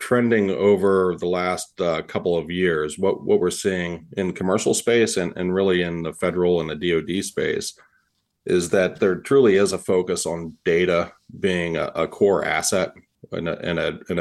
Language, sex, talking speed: English, male, 170 wpm